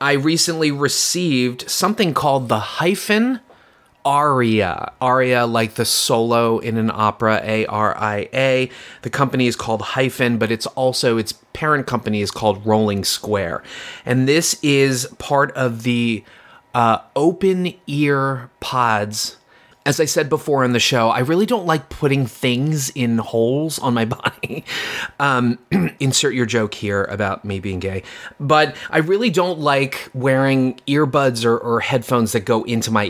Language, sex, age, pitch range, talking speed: English, male, 30-49, 115-140 Hz, 150 wpm